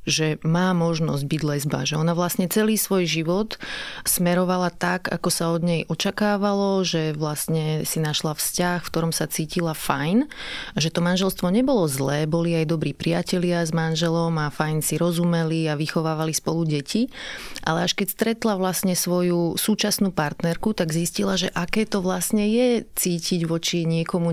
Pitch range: 155-185 Hz